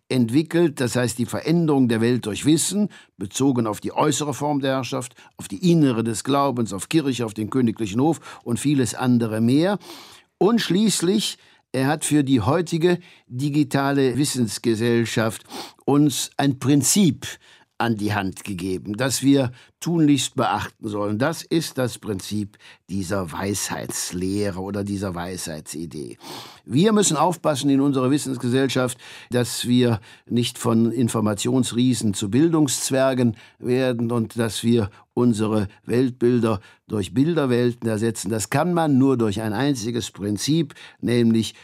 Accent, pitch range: German, 110-140 Hz